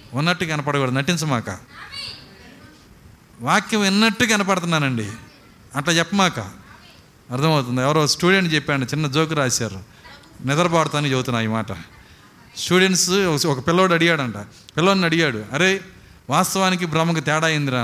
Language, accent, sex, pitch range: Telugu, native, male, 130-200 Hz